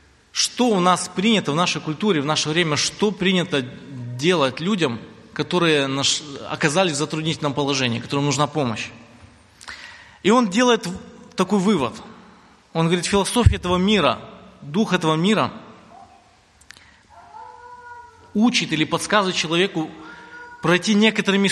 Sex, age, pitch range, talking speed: male, 30-49, 140-200 Hz, 115 wpm